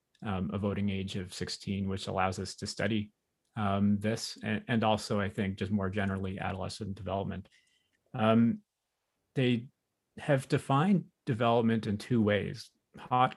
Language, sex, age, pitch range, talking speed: English, male, 30-49, 105-115 Hz, 145 wpm